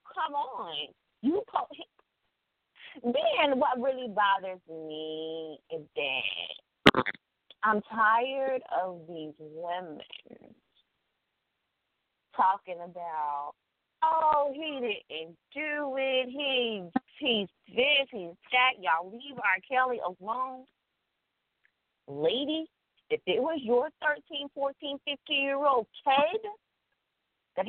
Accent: American